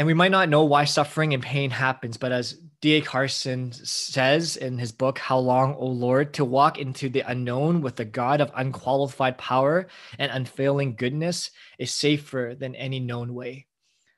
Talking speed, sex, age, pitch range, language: 180 wpm, male, 20-39, 125-150 Hz, English